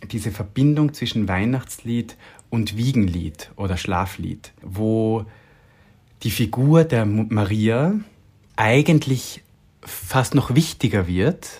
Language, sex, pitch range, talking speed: German, male, 100-120 Hz, 95 wpm